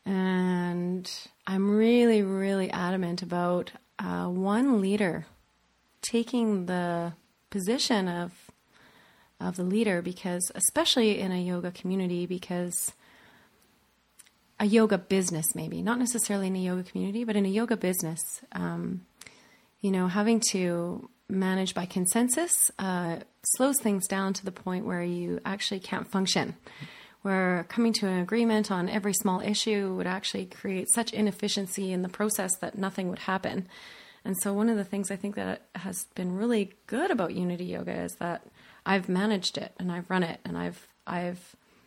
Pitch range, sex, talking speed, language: 180-215 Hz, female, 155 wpm, English